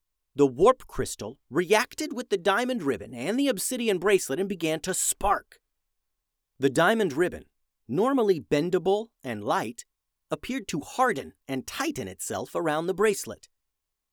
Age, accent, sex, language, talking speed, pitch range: 40-59, American, male, English, 135 wpm, 125-200 Hz